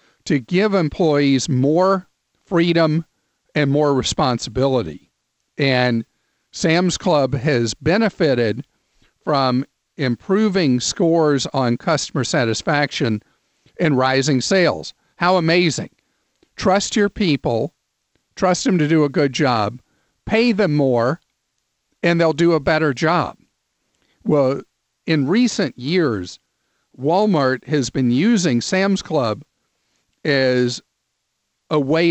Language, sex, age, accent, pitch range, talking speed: English, male, 50-69, American, 130-170 Hz, 105 wpm